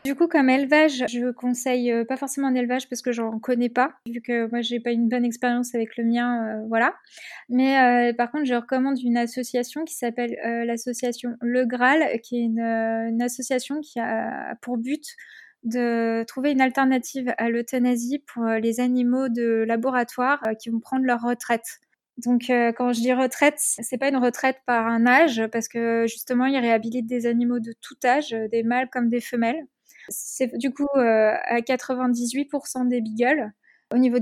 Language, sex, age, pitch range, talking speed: French, female, 20-39, 235-255 Hz, 185 wpm